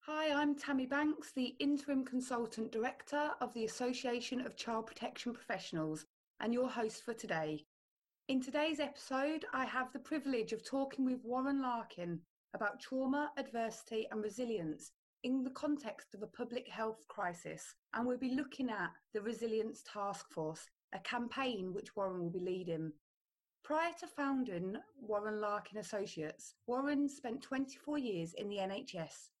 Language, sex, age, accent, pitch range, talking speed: English, female, 30-49, British, 210-270 Hz, 150 wpm